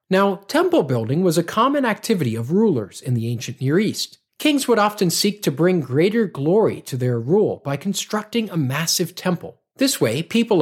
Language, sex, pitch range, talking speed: English, male, 140-210 Hz, 185 wpm